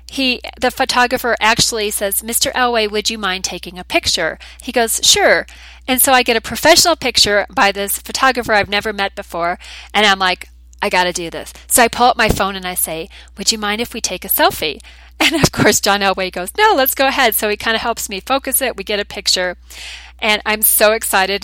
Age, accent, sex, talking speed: 40-59, American, female, 220 wpm